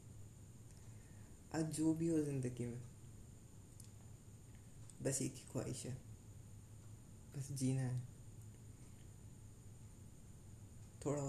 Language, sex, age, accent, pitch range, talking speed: Hindi, female, 20-39, native, 110-140 Hz, 75 wpm